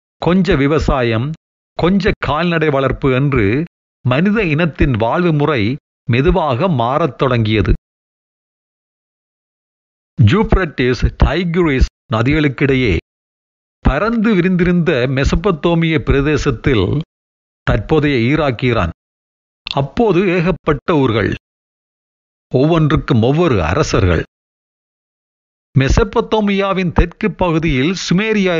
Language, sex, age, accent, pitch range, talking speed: Tamil, male, 40-59, native, 115-170 Hz, 65 wpm